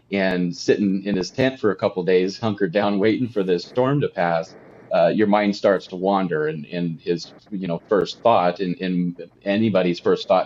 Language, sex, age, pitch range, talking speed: English, male, 30-49, 90-100 Hz, 205 wpm